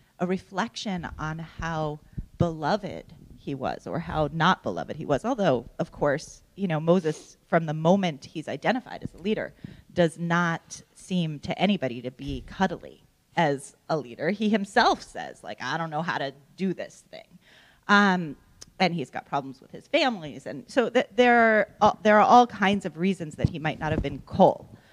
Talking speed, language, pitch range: 185 wpm, English, 160-220 Hz